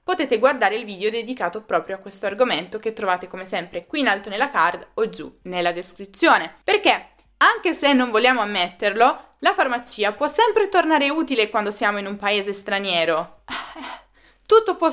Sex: female